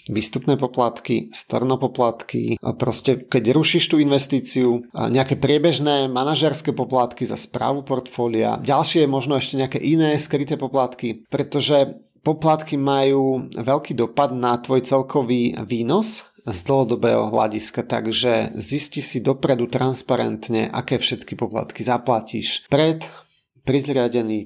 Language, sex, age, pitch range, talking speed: Slovak, male, 30-49, 125-150 Hz, 115 wpm